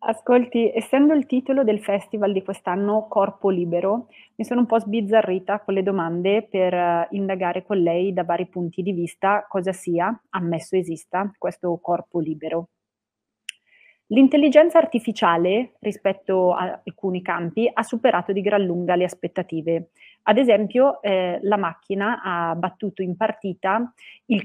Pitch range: 180-230 Hz